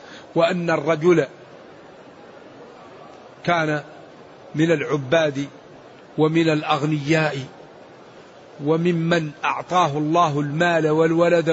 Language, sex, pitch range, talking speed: Arabic, male, 165-190 Hz, 60 wpm